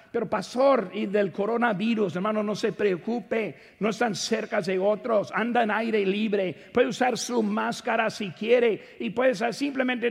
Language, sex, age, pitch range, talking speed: Spanish, male, 50-69, 215-265 Hz, 160 wpm